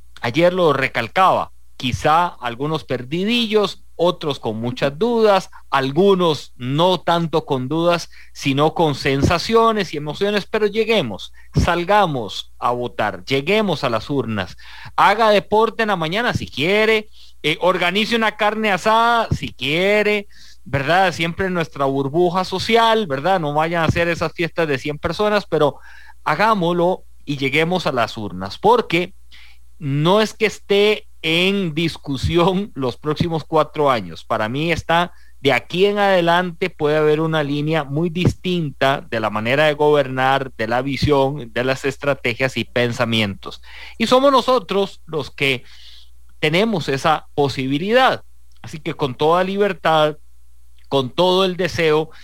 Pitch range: 135-190 Hz